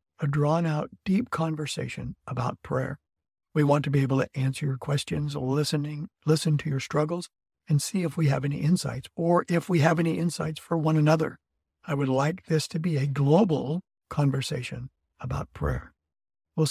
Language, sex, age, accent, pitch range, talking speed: English, male, 60-79, American, 135-165 Hz, 175 wpm